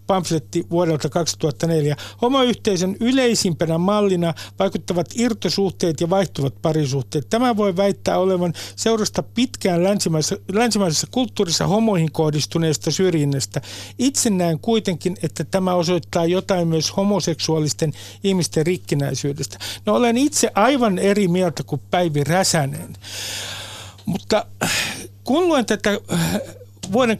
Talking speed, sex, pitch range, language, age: 105 wpm, male, 150-200 Hz, Finnish, 60-79